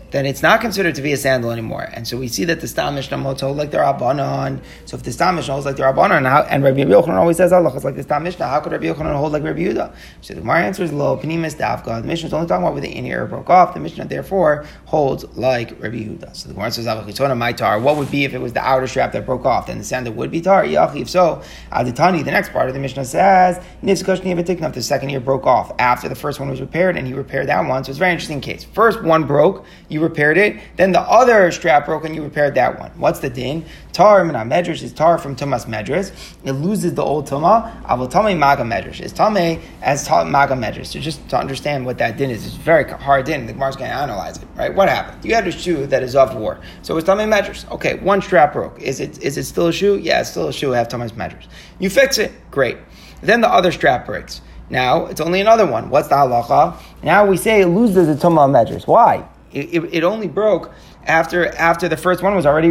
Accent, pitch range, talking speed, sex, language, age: American, 130-175 Hz, 255 wpm, male, English, 30-49